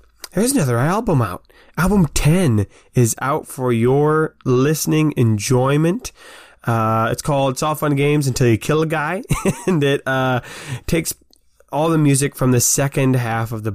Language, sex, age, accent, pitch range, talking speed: English, male, 20-39, American, 115-150 Hz, 160 wpm